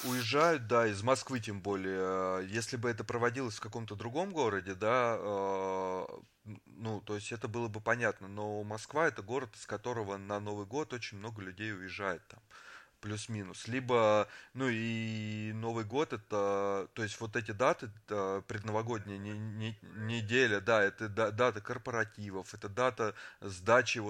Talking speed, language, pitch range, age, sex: 145 wpm, Russian, 100-120 Hz, 30-49, male